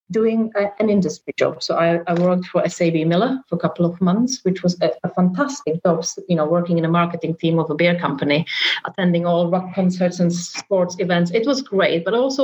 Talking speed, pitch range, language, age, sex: 215 wpm, 170-200 Hz, English, 30-49, female